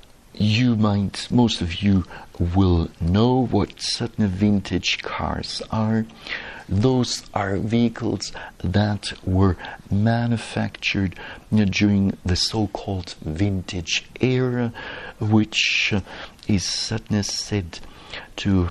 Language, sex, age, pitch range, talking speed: English, male, 60-79, 95-115 Hz, 95 wpm